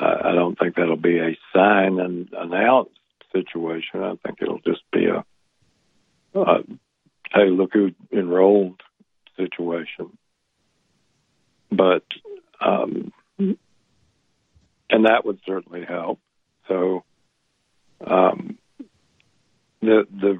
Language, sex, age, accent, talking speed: English, male, 60-79, American, 95 wpm